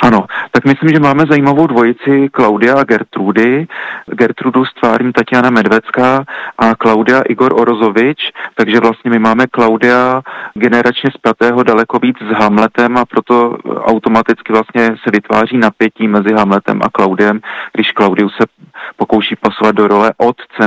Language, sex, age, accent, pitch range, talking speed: Czech, male, 40-59, native, 105-120 Hz, 140 wpm